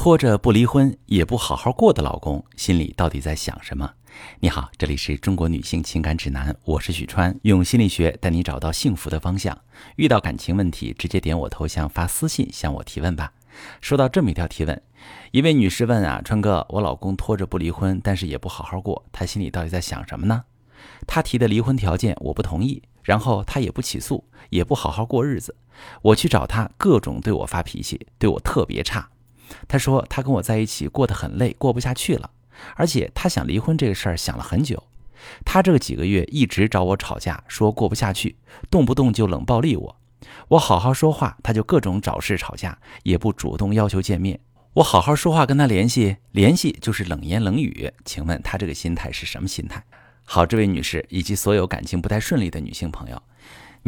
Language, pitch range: Chinese, 85-120 Hz